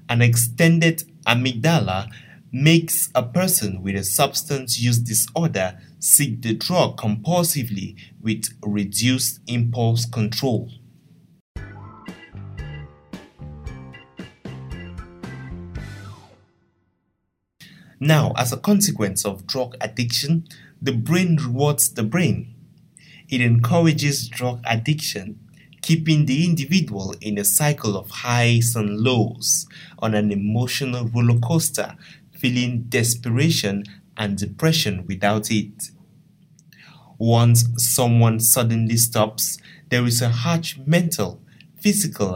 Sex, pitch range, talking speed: male, 105-155 Hz, 95 wpm